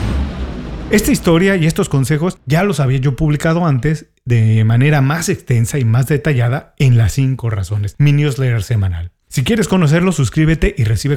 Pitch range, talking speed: 115-160 Hz, 165 wpm